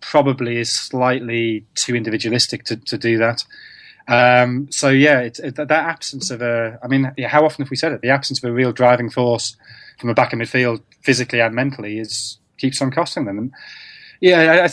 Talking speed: 210 wpm